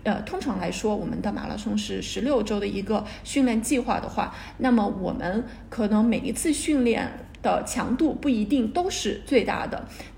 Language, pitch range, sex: Chinese, 215-260 Hz, female